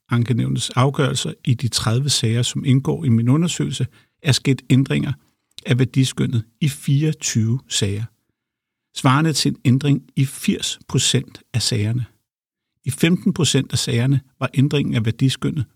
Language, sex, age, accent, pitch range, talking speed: Danish, male, 50-69, native, 115-135 Hz, 135 wpm